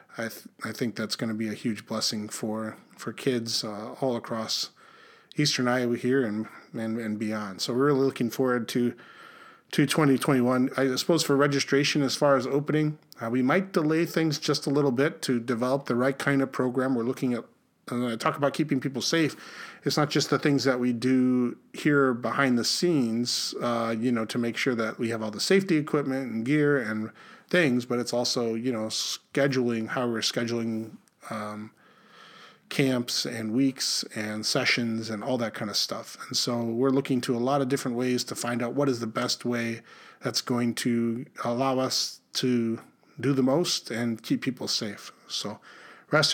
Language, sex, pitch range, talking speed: English, male, 115-140 Hz, 195 wpm